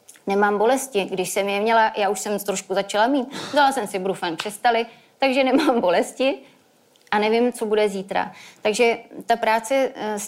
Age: 30-49